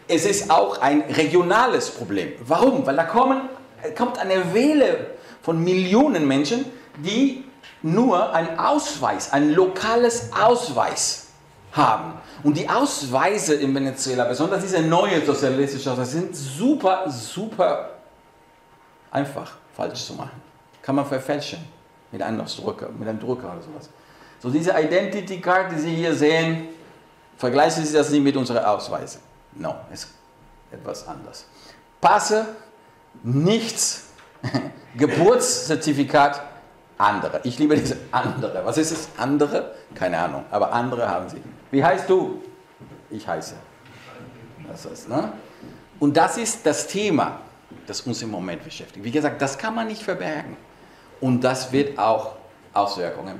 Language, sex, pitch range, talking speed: German, male, 135-195 Hz, 130 wpm